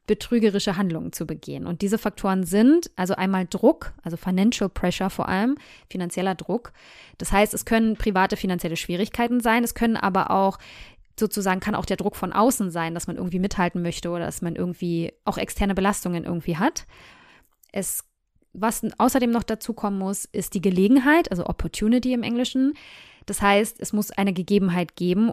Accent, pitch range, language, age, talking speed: German, 180-220 Hz, German, 20-39, 175 wpm